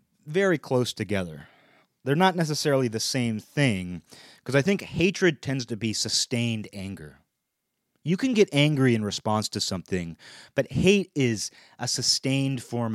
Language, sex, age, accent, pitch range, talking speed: English, male, 30-49, American, 105-140 Hz, 150 wpm